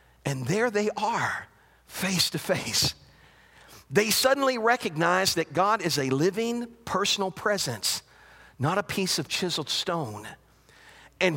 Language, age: English, 50-69